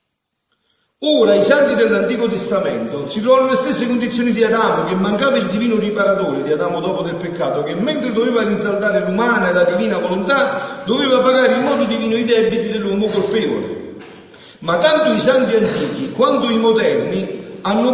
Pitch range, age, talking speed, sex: 210-255 Hz, 50-69, 165 wpm, male